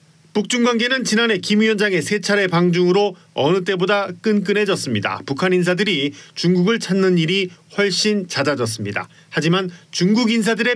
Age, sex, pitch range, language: 40-59, male, 160-215 Hz, Korean